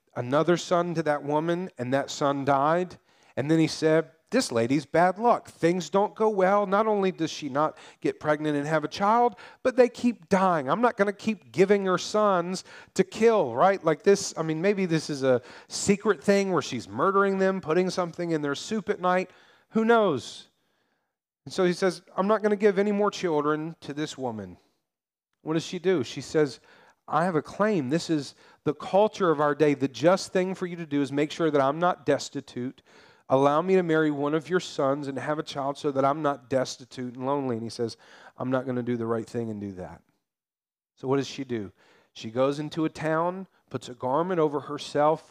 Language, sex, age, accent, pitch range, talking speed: English, male, 40-59, American, 140-185 Hz, 215 wpm